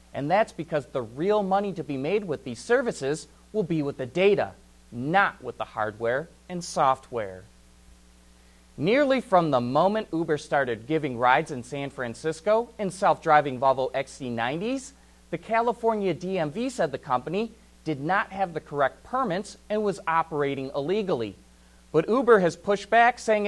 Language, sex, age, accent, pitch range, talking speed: English, male, 30-49, American, 125-200 Hz, 155 wpm